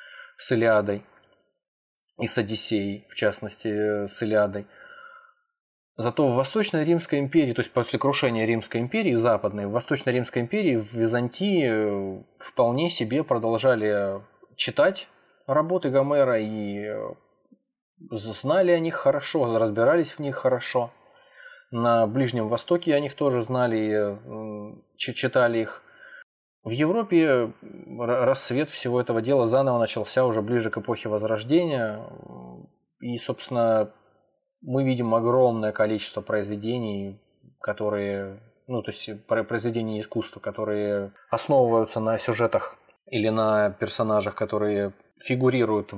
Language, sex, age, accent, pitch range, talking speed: Russian, male, 20-39, native, 105-135 Hz, 110 wpm